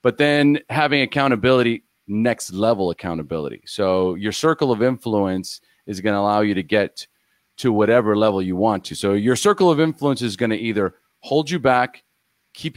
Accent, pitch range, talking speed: American, 95-120 Hz, 170 wpm